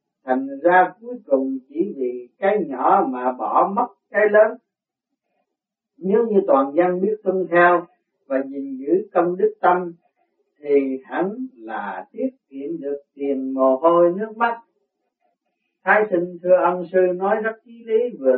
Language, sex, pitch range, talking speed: Vietnamese, male, 145-210 Hz, 155 wpm